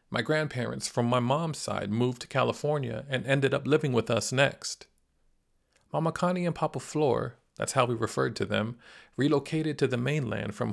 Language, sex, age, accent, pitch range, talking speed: English, male, 40-59, American, 115-150 Hz, 180 wpm